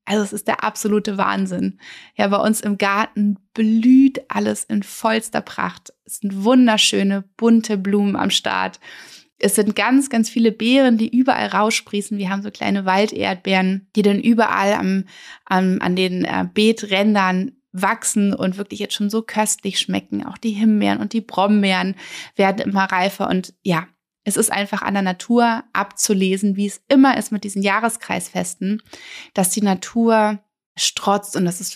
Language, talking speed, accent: German, 160 wpm, German